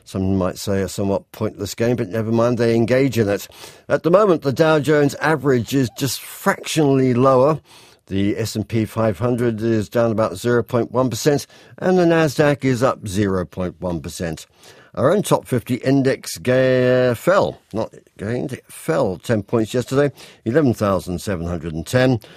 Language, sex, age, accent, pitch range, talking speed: English, male, 50-69, British, 110-140 Hz, 145 wpm